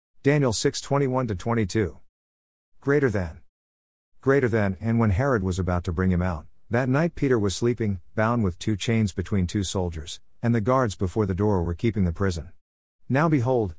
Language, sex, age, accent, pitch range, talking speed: English, male, 50-69, American, 90-120 Hz, 185 wpm